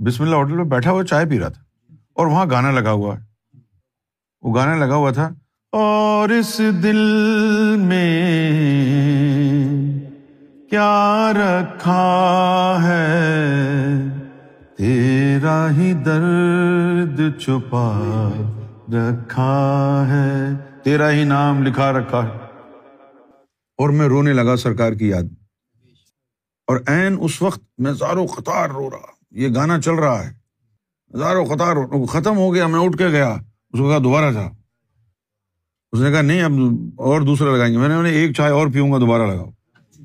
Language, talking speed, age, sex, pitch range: Urdu, 140 wpm, 50-69, male, 120-155 Hz